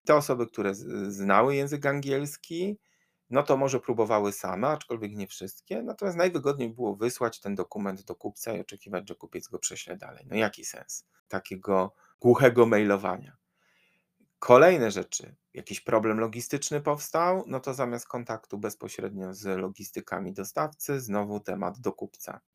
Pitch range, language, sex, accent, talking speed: 105-140 Hz, Polish, male, native, 140 wpm